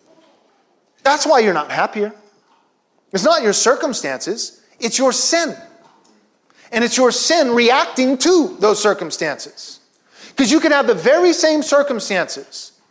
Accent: American